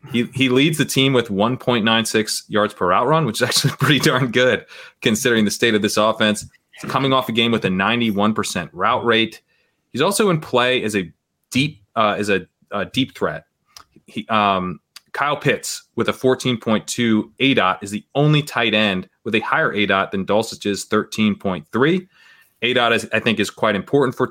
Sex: male